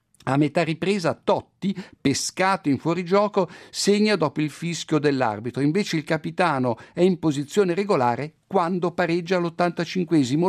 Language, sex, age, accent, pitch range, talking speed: Italian, male, 60-79, native, 145-195 Hz, 125 wpm